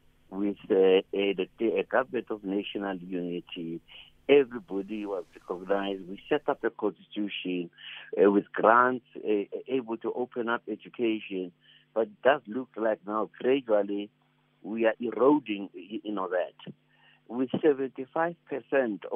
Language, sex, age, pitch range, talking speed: English, male, 60-79, 100-130 Hz, 130 wpm